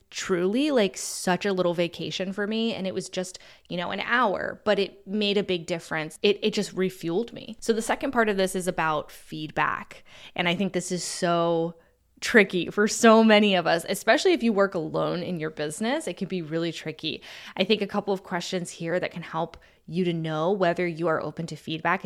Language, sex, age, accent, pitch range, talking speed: English, female, 20-39, American, 170-210 Hz, 220 wpm